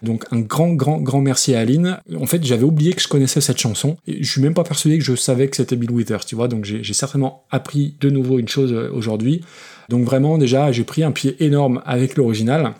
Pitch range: 120-145 Hz